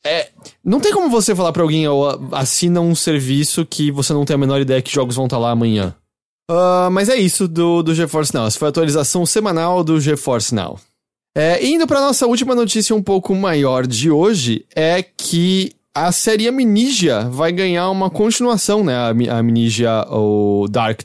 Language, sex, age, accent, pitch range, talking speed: English, male, 20-39, Brazilian, 125-185 Hz, 185 wpm